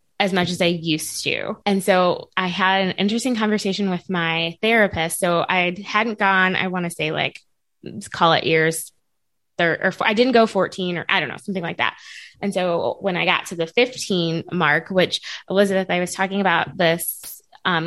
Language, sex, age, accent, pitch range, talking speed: English, female, 20-39, American, 175-210 Hz, 200 wpm